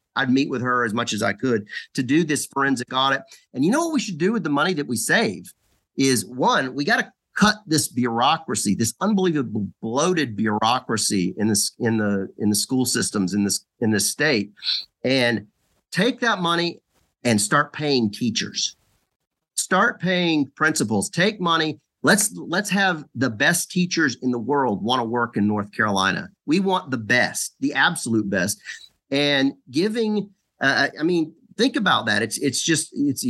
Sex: male